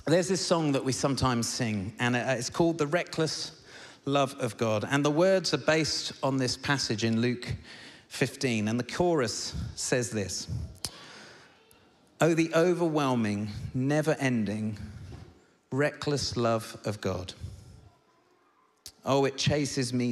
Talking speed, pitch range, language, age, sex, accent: 130 wpm, 110-140 Hz, English, 40-59, male, British